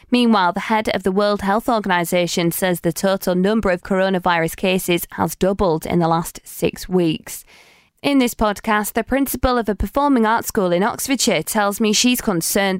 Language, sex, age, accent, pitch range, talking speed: English, female, 20-39, British, 180-225 Hz, 180 wpm